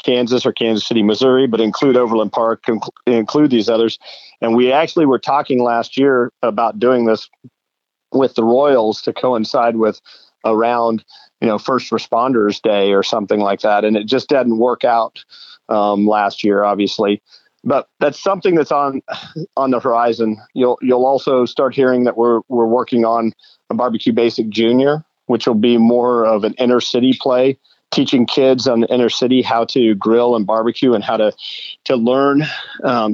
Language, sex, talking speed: English, male, 175 wpm